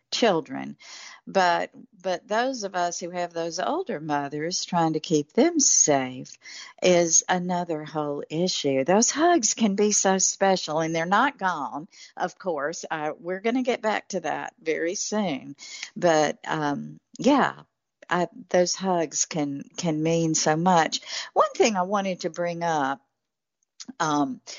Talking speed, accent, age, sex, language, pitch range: 150 wpm, American, 60-79, female, English, 155-230 Hz